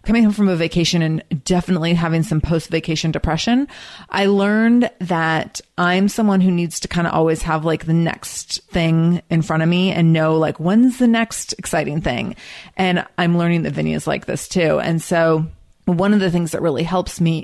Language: English